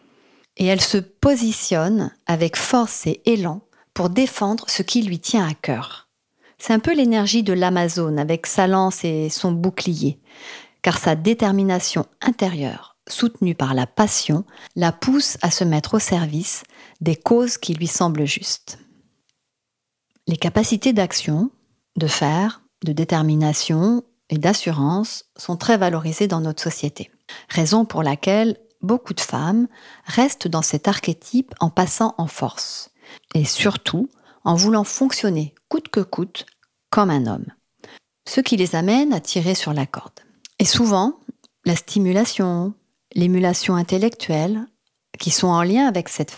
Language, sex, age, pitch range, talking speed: French, female, 40-59, 165-225 Hz, 140 wpm